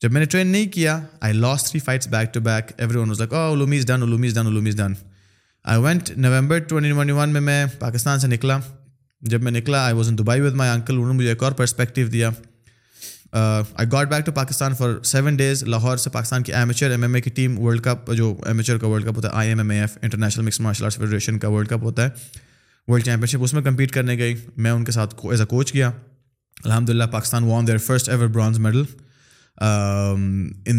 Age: 20-39